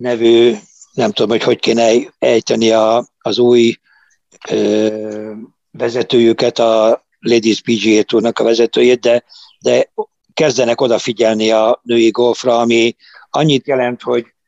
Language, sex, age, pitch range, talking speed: Hungarian, male, 60-79, 110-120 Hz, 110 wpm